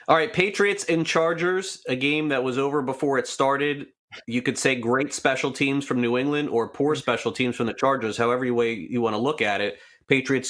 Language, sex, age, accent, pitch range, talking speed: English, male, 30-49, American, 115-150 Hz, 215 wpm